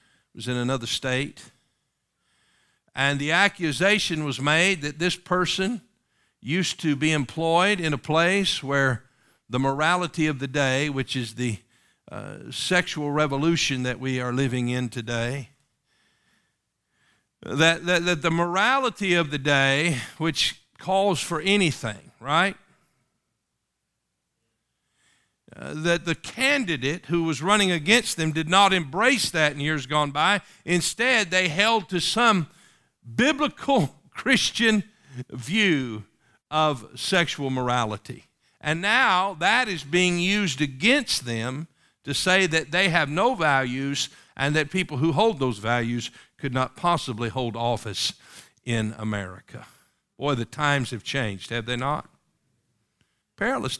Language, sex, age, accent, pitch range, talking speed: English, male, 50-69, American, 130-180 Hz, 130 wpm